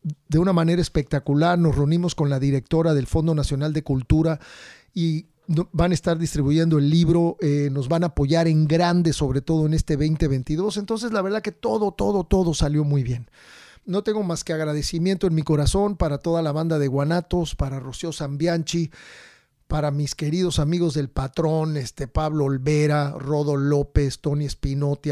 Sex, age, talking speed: male, 40-59, 175 wpm